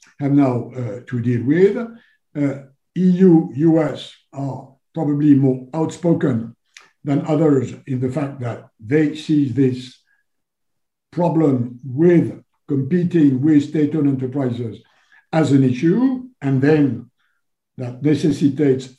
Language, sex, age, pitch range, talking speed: English, male, 60-79, 130-160 Hz, 105 wpm